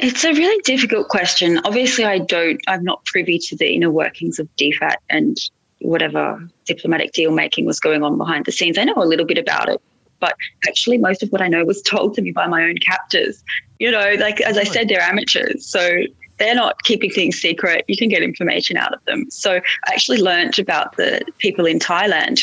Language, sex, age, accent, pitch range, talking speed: English, female, 20-39, Australian, 165-220 Hz, 215 wpm